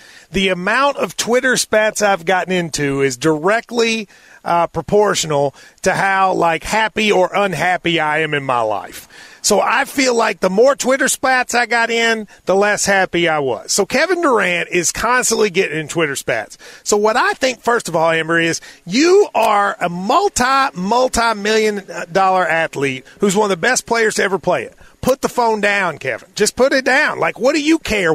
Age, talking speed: 40-59, 190 wpm